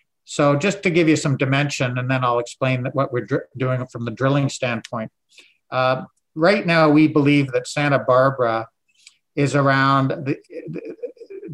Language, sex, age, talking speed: English, male, 60-79, 160 wpm